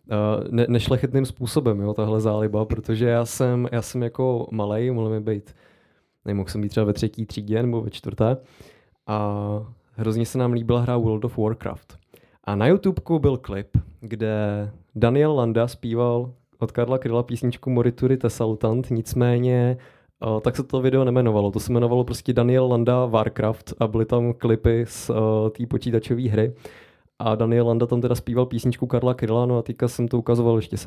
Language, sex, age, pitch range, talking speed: Czech, male, 20-39, 105-120 Hz, 175 wpm